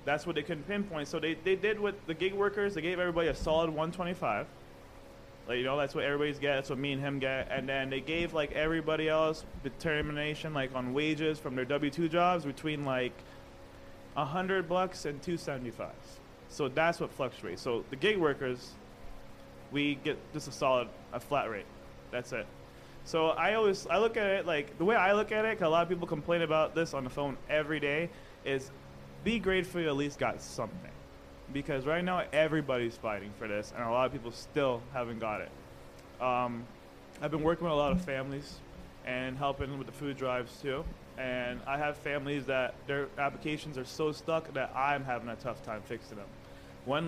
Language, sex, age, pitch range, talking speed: English, male, 20-39, 115-155 Hz, 200 wpm